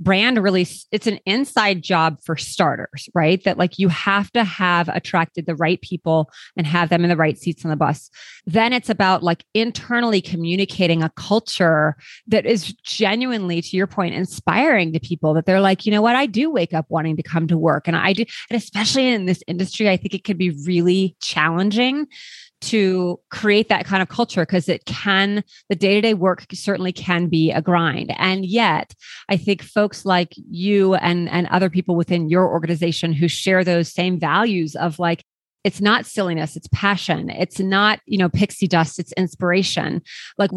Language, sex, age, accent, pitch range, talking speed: English, female, 30-49, American, 170-200 Hz, 190 wpm